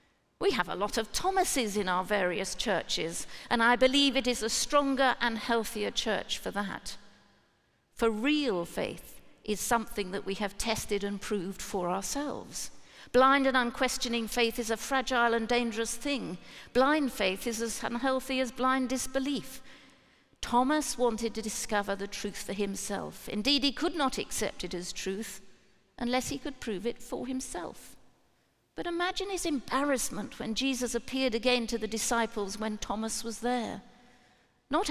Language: English